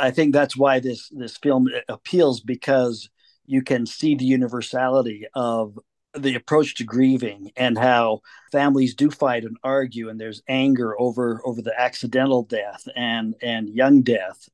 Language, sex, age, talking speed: English, male, 50-69, 155 wpm